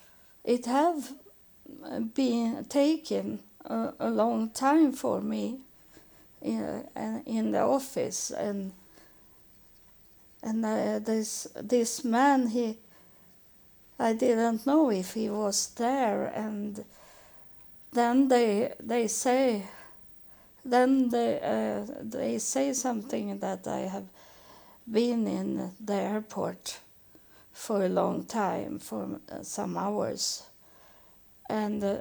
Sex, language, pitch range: female, English, 205-250 Hz